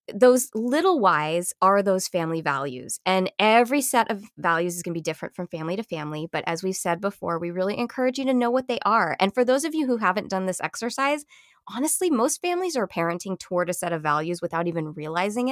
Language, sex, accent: English, female, American